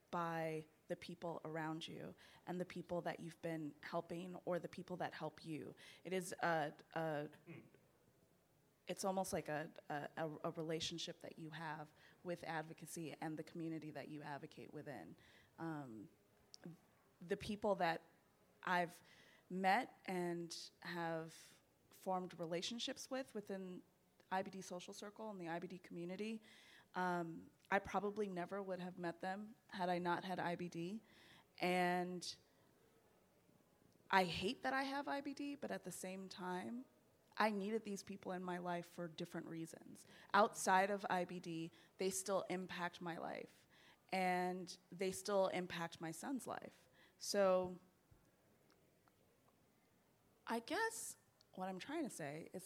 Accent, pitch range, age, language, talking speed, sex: American, 165-190 Hz, 20-39, English, 135 wpm, female